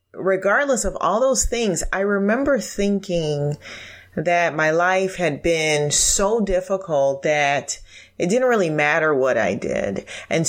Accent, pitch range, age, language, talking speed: American, 135-185 Hz, 30-49, English, 135 wpm